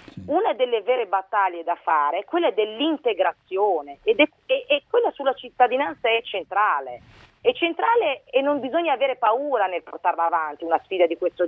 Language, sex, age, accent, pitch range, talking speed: Italian, female, 40-59, native, 180-260 Hz, 150 wpm